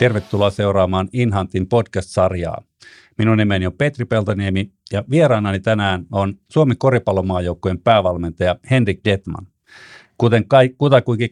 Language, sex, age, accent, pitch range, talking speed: Finnish, male, 50-69, native, 95-115 Hz, 110 wpm